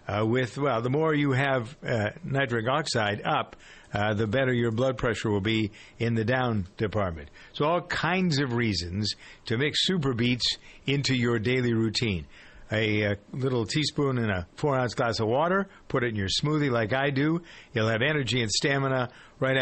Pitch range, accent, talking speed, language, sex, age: 110-150 Hz, American, 180 wpm, English, male, 50-69